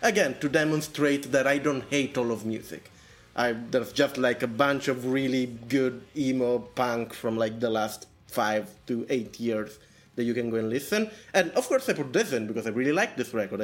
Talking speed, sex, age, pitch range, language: 205 wpm, male, 20-39, 125-180 Hz, English